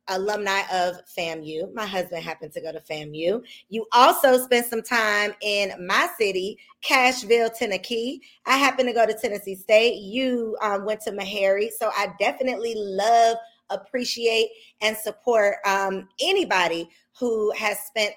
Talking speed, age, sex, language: 145 wpm, 20-39, female, English